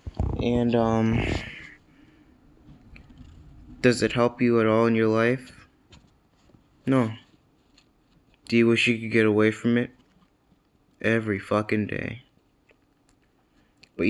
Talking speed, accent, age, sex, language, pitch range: 105 wpm, American, 20-39, male, English, 105-120 Hz